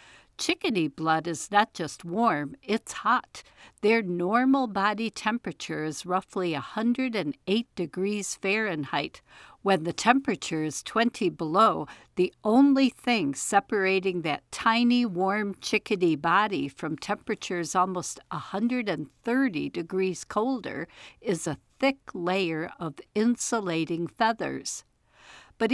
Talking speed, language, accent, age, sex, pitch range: 105 wpm, English, American, 60-79, female, 170-230 Hz